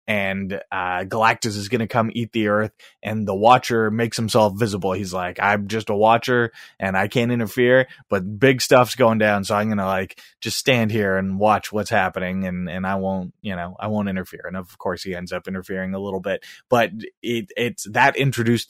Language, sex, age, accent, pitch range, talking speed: English, male, 20-39, American, 100-115 Hz, 215 wpm